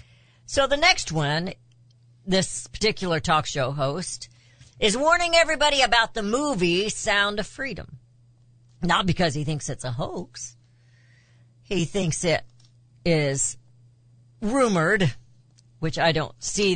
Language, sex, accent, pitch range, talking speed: English, female, American, 120-195 Hz, 120 wpm